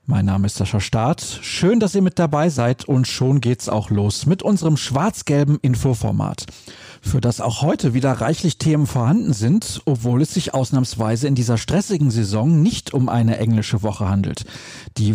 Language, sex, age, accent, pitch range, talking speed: German, male, 40-59, German, 115-155 Hz, 175 wpm